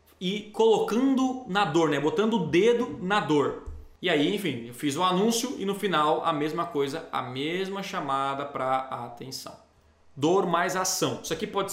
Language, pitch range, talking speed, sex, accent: Portuguese, 140-210 Hz, 185 wpm, male, Brazilian